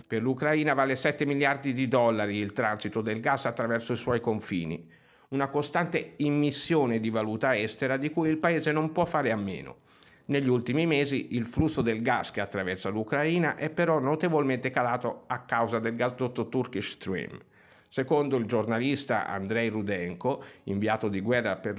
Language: Italian